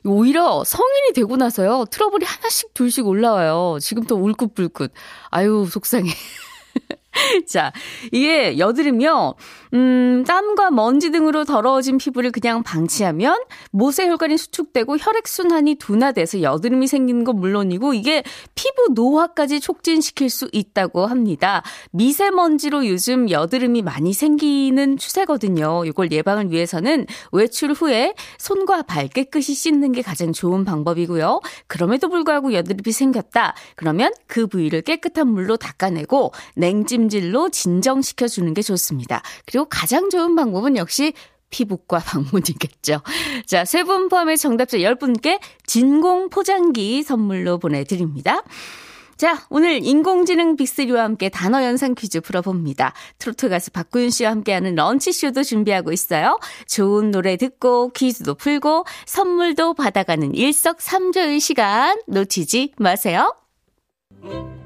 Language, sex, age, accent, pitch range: Korean, female, 20-39, native, 190-305 Hz